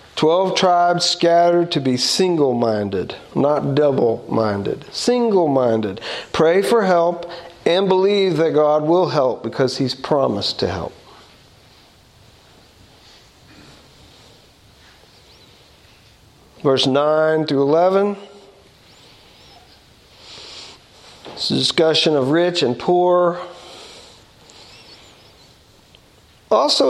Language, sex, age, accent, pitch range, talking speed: English, male, 50-69, American, 150-190 Hz, 85 wpm